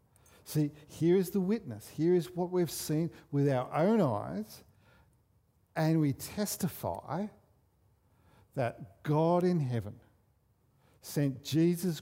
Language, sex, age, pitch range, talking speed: English, male, 50-69, 120-160 Hz, 115 wpm